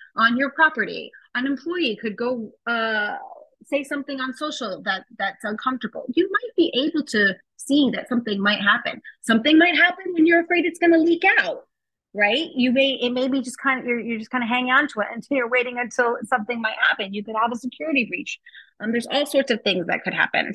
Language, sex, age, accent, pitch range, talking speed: English, female, 30-49, American, 205-280 Hz, 220 wpm